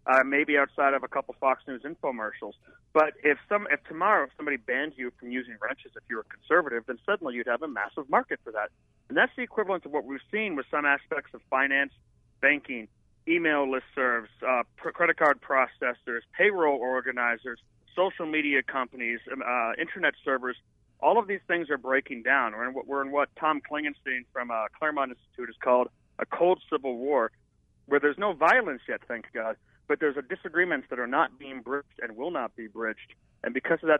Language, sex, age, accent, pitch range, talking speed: English, male, 40-59, American, 130-175 Hz, 195 wpm